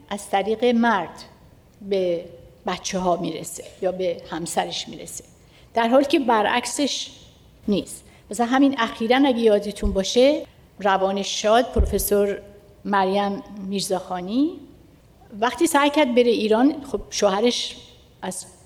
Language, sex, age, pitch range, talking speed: Persian, female, 60-79, 195-245 Hz, 110 wpm